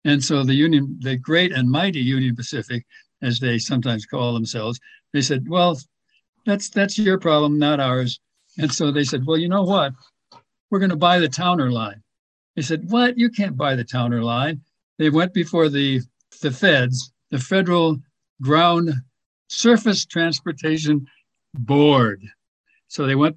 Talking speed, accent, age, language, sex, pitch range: 160 wpm, American, 60-79, English, male, 135-175 Hz